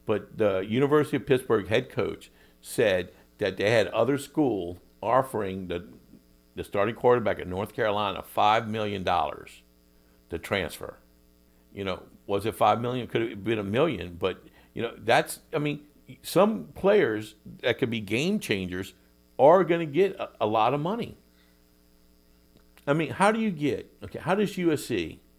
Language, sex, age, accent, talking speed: English, male, 50-69, American, 160 wpm